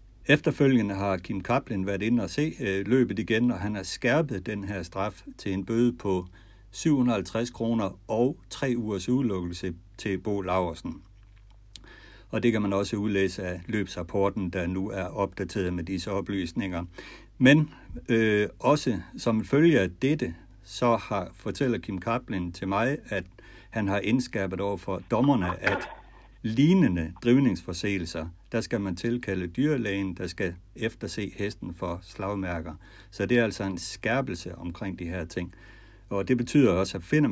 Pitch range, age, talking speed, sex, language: 95-115 Hz, 60-79, 155 wpm, male, Danish